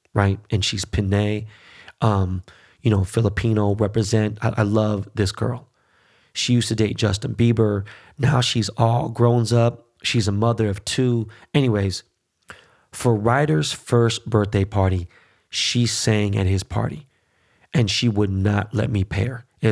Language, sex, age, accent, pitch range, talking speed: English, male, 30-49, American, 105-125 Hz, 150 wpm